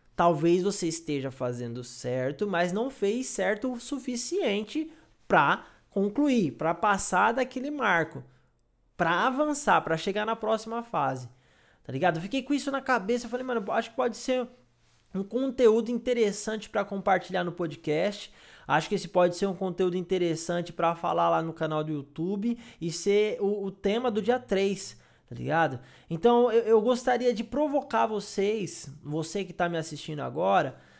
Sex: male